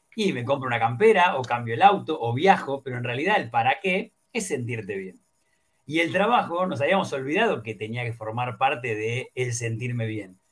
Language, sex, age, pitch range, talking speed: Spanish, male, 40-59, 120-195 Hz, 200 wpm